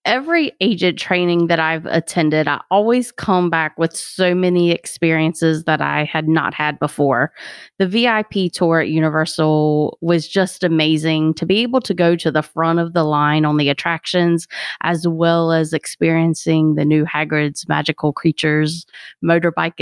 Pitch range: 160-200 Hz